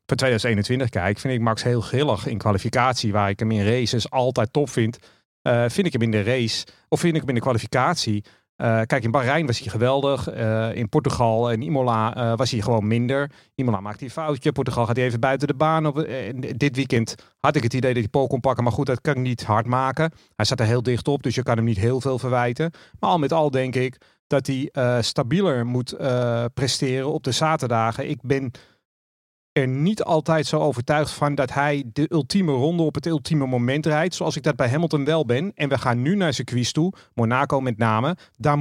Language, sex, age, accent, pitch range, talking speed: Dutch, male, 40-59, Dutch, 120-150 Hz, 225 wpm